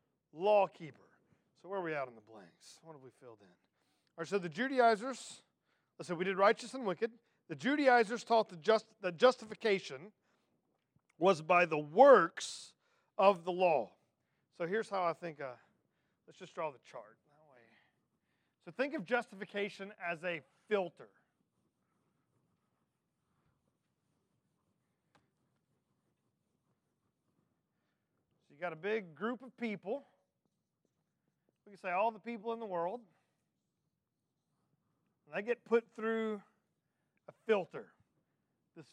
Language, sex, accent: English, male, American